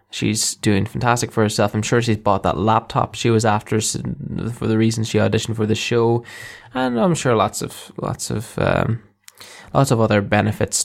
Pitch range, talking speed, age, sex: 105-120 Hz, 190 wpm, 10-29, male